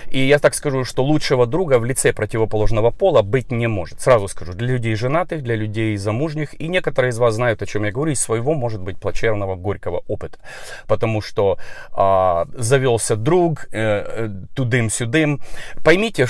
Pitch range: 110-150 Hz